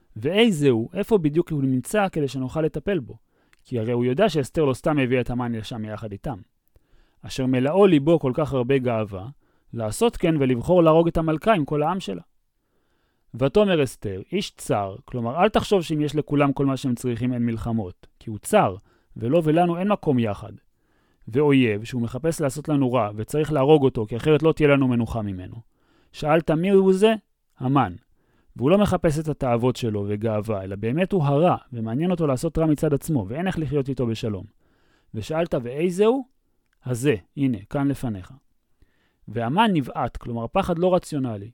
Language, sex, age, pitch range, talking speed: Hebrew, male, 30-49, 120-160 Hz, 175 wpm